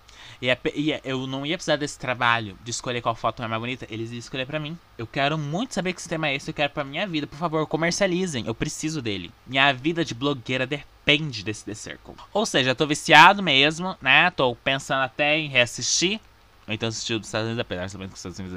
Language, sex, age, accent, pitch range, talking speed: Portuguese, male, 20-39, Brazilian, 115-165 Hz, 235 wpm